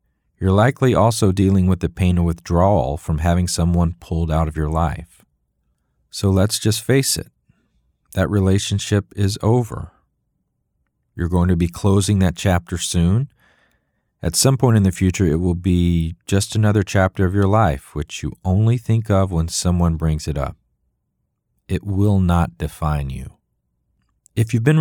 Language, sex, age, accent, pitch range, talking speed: English, male, 40-59, American, 85-110 Hz, 160 wpm